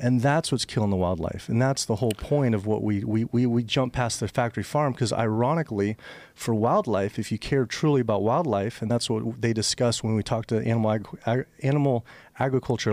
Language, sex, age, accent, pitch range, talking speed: English, male, 40-59, American, 110-150 Hz, 205 wpm